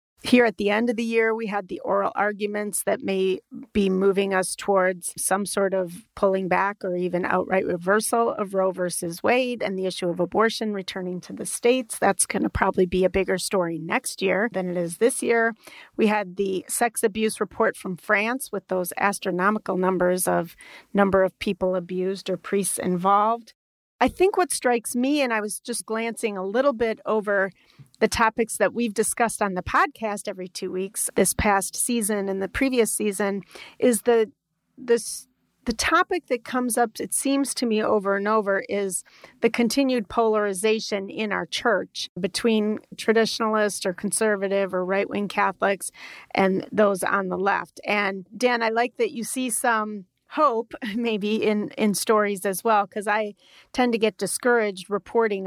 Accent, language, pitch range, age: American, English, 190-230 Hz, 40-59